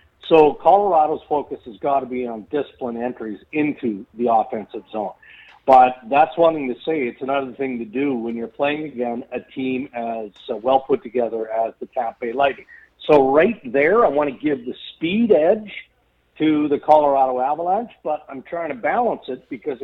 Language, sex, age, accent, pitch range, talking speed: English, male, 50-69, American, 115-145 Hz, 185 wpm